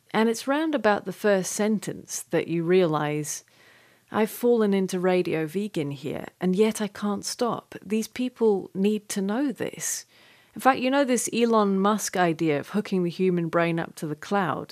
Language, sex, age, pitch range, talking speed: English, female, 30-49, 165-205 Hz, 180 wpm